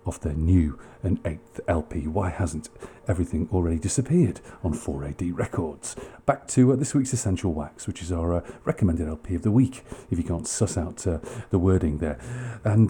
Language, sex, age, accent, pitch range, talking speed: English, male, 40-59, British, 85-120 Hz, 185 wpm